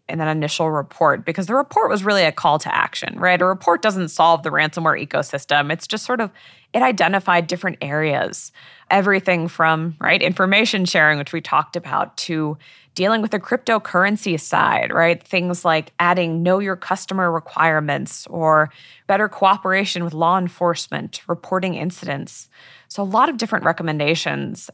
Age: 20-39